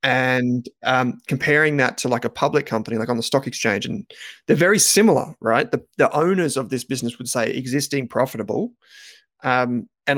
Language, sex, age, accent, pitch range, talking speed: English, male, 20-39, Australian, 125-155 Hz, 185 wpm